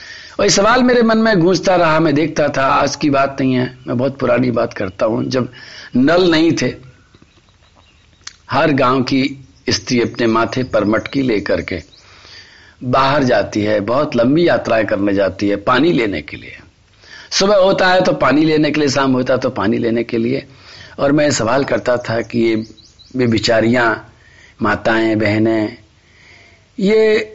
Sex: male